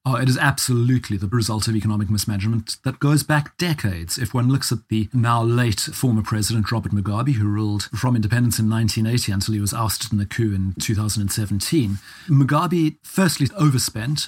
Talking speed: 175 wpm